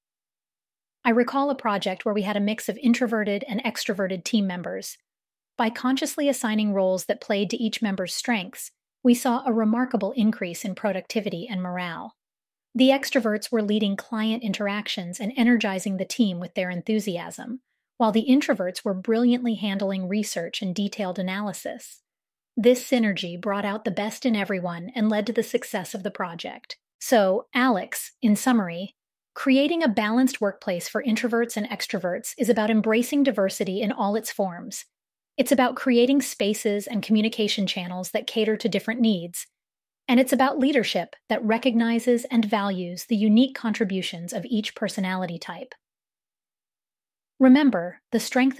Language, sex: English, female